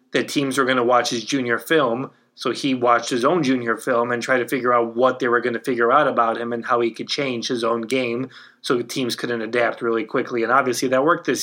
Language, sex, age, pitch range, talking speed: English, male, 20-39, 115-125 Hz, 265 wpm